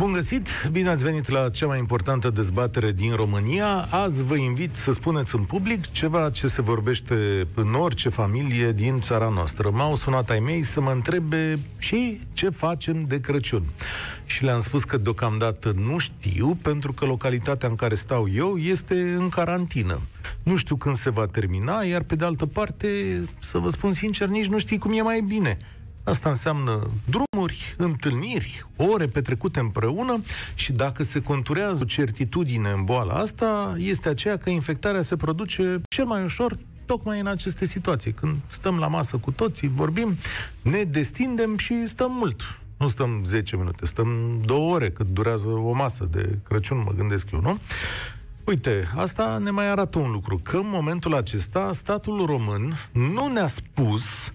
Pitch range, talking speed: 110-180 Hz, 170 wpm